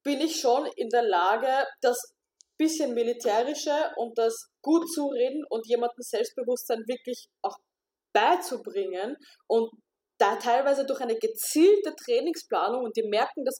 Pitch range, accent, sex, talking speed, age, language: 235-400 Hz, German, female, 130 wpm, 20-39, German